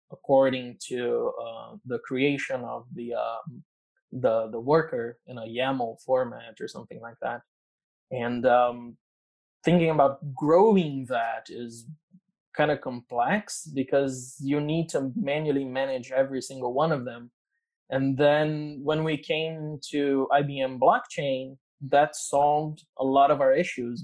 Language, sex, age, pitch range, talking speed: English, male, 20-39, 125-150 Hz, 135 wpm